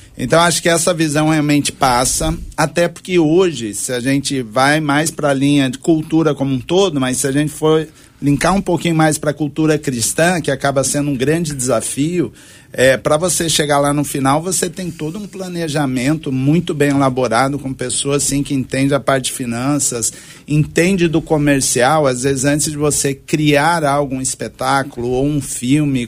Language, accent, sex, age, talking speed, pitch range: Portuguese, Brazilian, male, 50-69, 180 wpm, 130-155 Hz